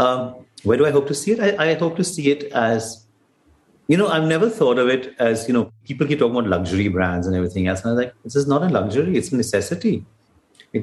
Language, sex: English, male